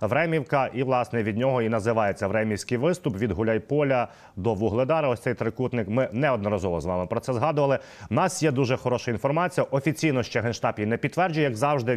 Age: 30-49